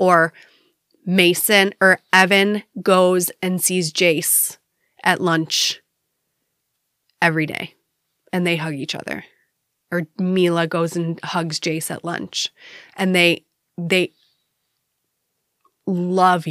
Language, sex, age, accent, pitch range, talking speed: English, female, 30-49, American, 175-200 Hz, 105 wpm